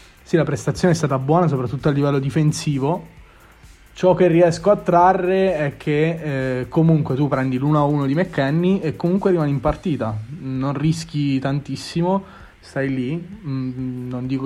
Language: Italian